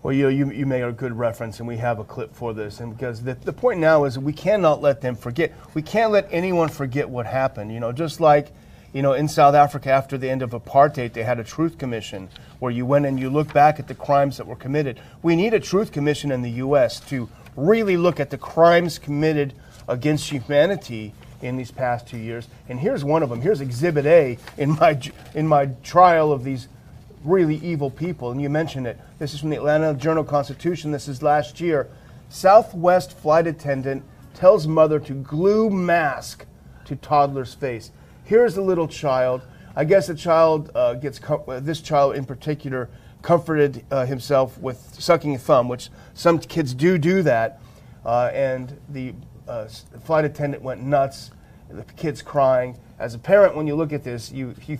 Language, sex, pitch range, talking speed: English, male, 125-155 Hz, 200 wpm